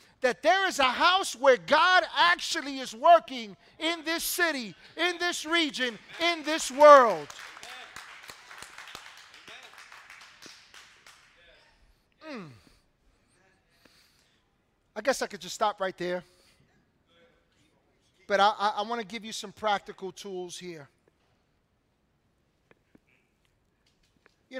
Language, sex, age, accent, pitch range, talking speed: English, male, 40-59, American, 215-275 Hz, 100 wpm